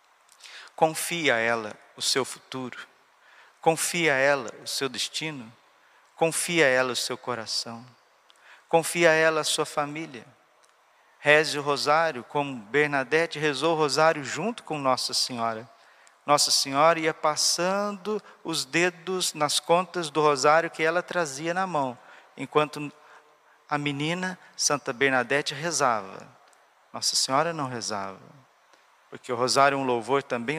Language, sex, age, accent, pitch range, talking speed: Portuguese, male, 40-59, Brazilian, 125-155 Hz, 135 wpm